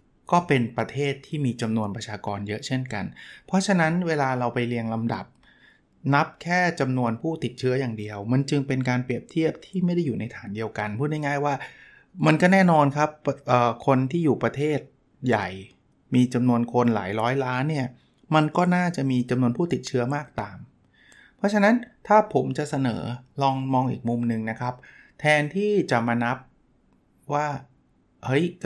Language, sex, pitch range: Thai, male, 115-150 Hz